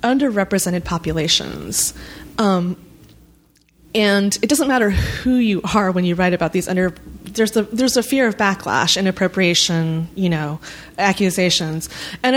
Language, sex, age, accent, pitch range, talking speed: English, female, 20-39, American, 175-225 Hz, 135 wpm